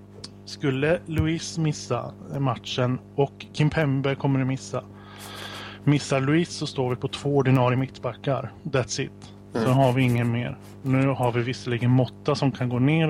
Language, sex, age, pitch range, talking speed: Swedish, male, 20-39, 115-135 Hz, 160 wpm